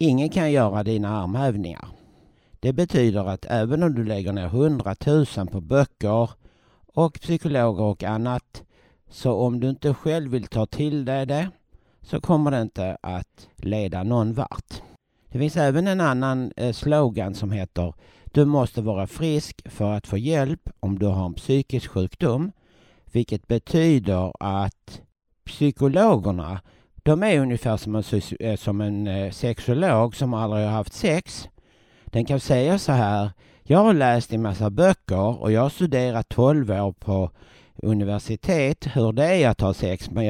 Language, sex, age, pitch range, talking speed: Swedish, male, 60-79, 105-145 Hz, 155 wpm